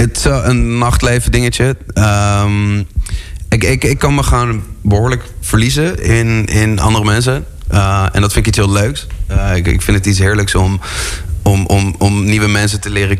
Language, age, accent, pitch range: Dutch, 20-39, Dutch, 95-105 Hz